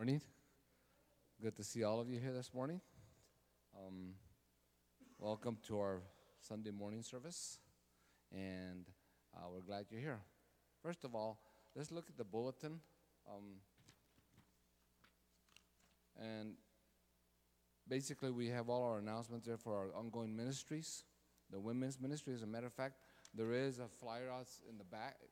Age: 40-59